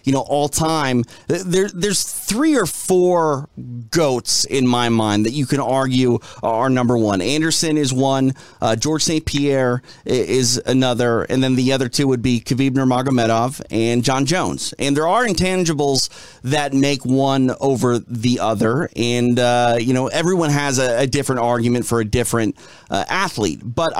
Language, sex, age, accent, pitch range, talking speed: English, male, 30-49, American, 125-160 Hz, 170 wpm